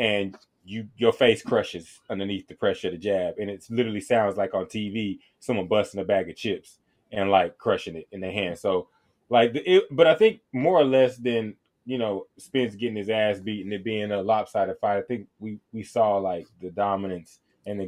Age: 20-39